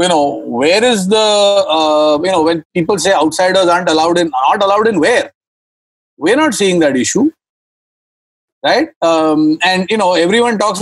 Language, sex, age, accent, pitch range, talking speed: English, male, 40-59, Indian, 175-250 Hz, 170 wpm